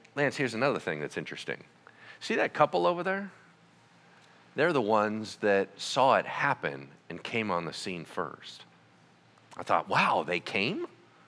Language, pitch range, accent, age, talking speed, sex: English, 100-150 Hz, American, 40-59, 155 wpm, male